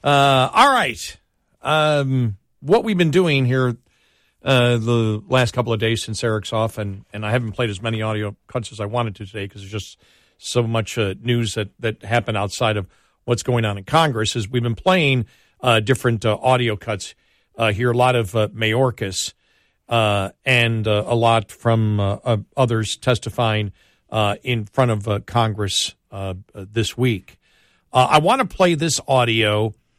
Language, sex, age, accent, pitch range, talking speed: English, male, 50-69, American, 110-130 Hz, 180 wpm